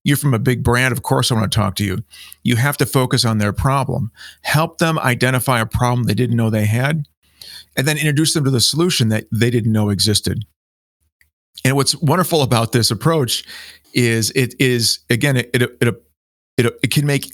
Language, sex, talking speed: English, male, 195 wpm